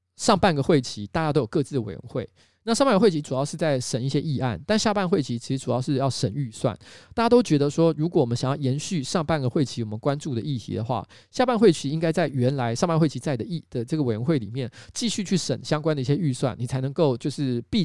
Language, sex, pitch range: Chinese, male, 125-165 Hz